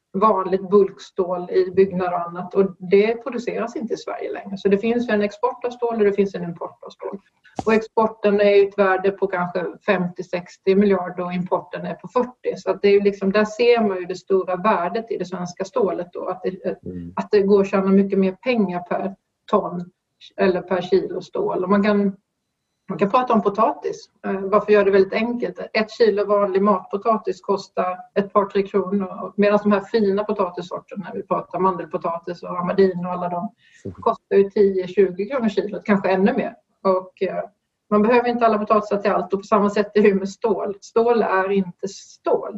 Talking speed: 200 wpm